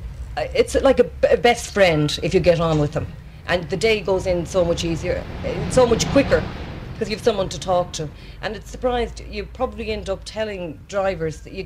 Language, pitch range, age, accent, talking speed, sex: English, 150-195 Hz, 40-59, Irish, 205 wpm, female